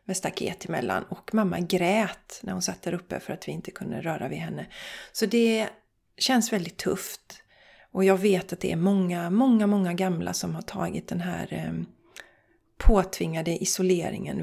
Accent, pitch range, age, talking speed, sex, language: native, 185-235 Hz, 30-49, 175 wpm, female, Swedish